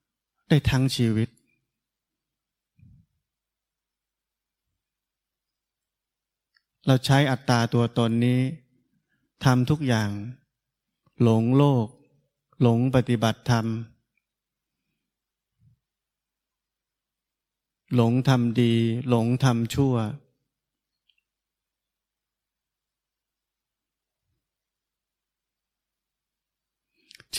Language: Thai